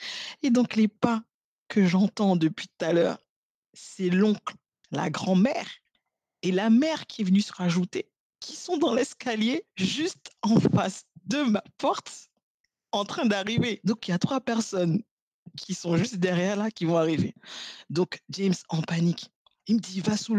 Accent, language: French, French